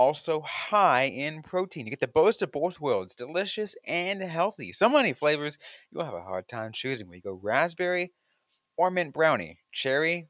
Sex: male